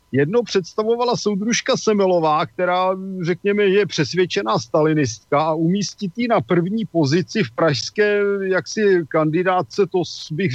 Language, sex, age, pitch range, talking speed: Slovak, male, 50-69, 150-180 Hz, 120 wpm